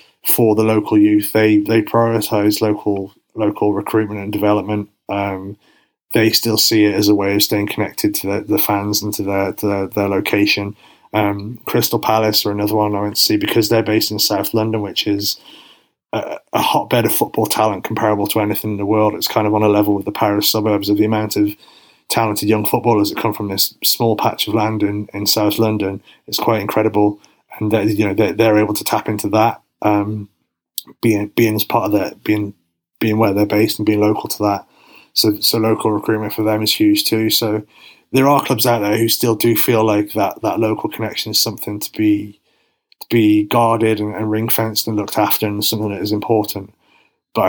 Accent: British